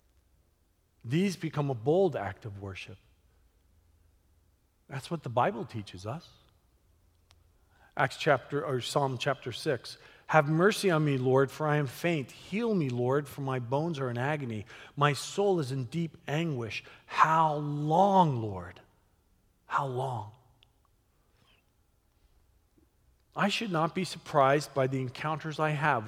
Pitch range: 100-160 Hz